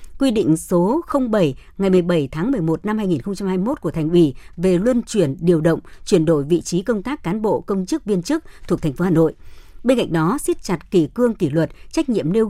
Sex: male